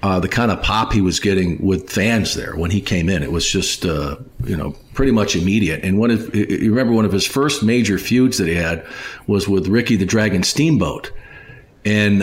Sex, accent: male, American